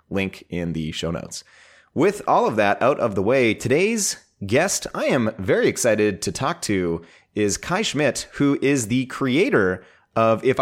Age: 30-49